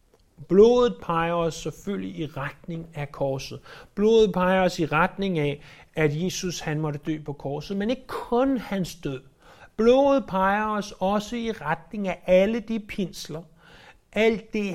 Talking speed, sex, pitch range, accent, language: 155 wpm, male, 155-200 Hz, native, Danish